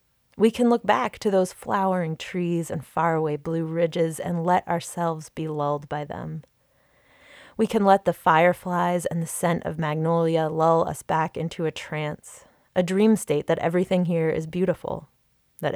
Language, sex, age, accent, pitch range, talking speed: English, female, 20-39, American, 155-180 Hz, 170 wpm